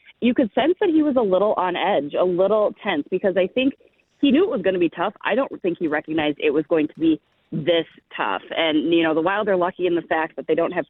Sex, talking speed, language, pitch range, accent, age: female, 275 wpm, English, 155-185 Hz, American, 30-49